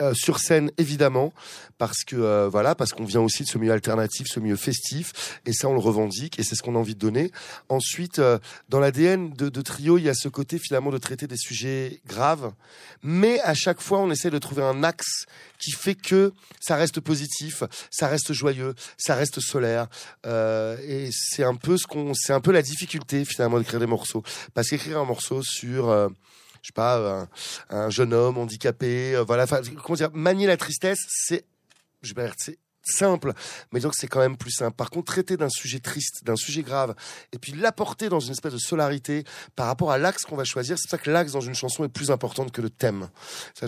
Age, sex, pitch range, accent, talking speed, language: 30-49, male, 120-155 Hz, French, 220 wpm, French